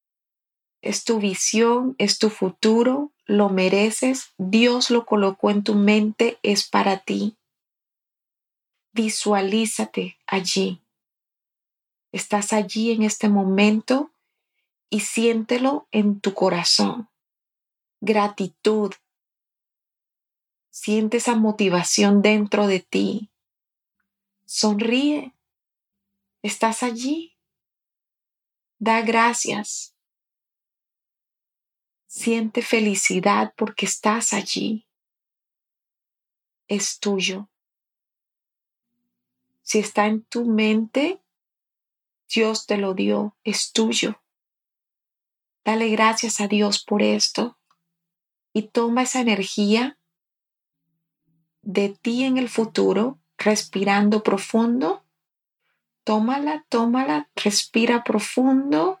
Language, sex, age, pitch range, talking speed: Spanish, female, 30-49, 200-235 Hz, 80 wpm